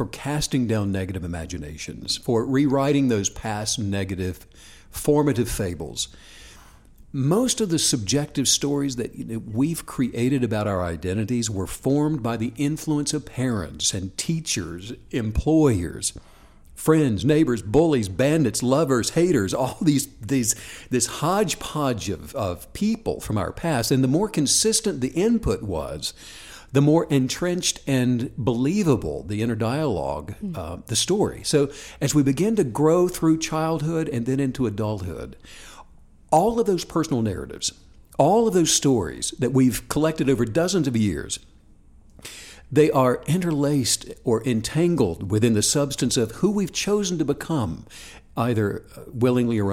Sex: male